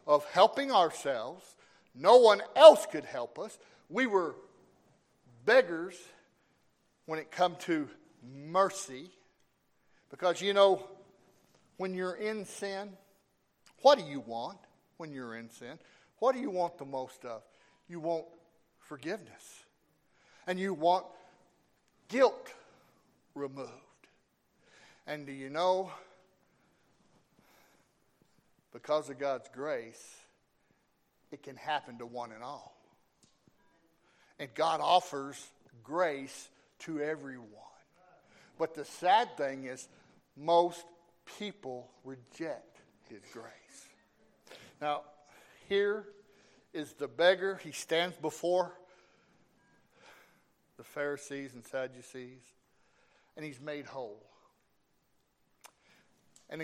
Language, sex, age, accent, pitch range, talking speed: English, male, 60-79, American, 140-190 Hz, 100 wpm